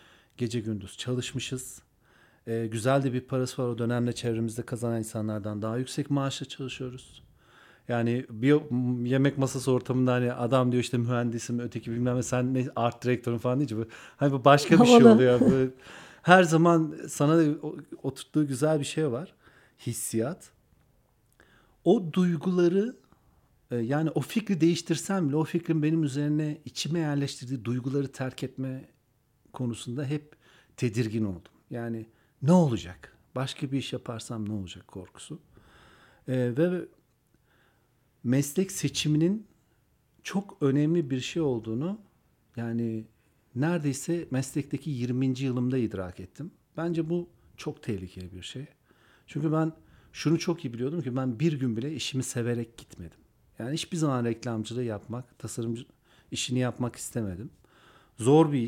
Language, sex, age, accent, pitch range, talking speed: Turkish, male, 40-59, native, 120-150 Hz, 130 wpm